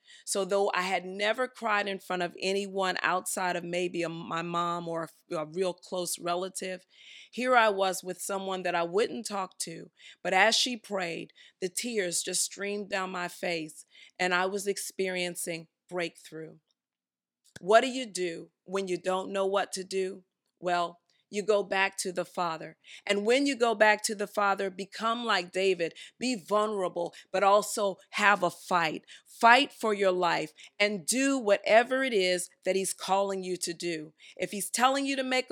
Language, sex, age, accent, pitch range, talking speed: English, female, 40-59, American, 180-225 Hz, 175 wpm